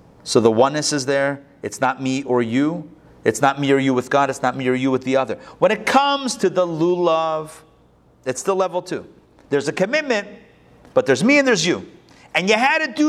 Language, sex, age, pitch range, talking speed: English, male, 40-59, 165-270 Hz, 225 wpm